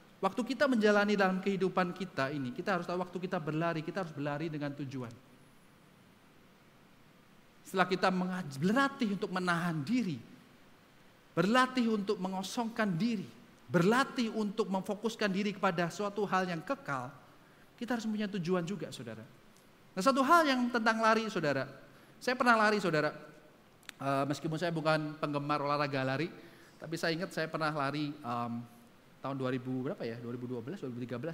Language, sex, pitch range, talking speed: Indonesian, male, 140-205 Hz, 135 wpm